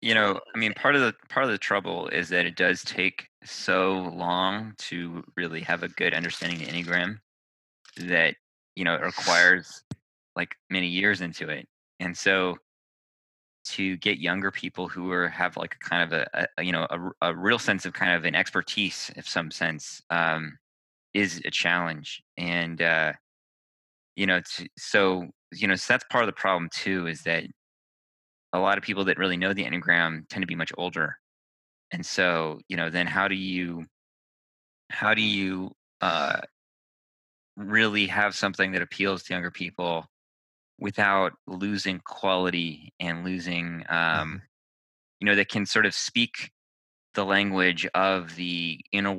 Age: 20-39